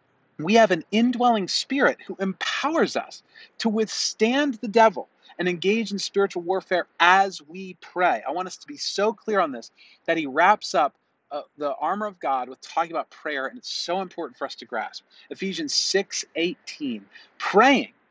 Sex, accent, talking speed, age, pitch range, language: male, American, 180 wpm, 40-59, 160-220 Hz, English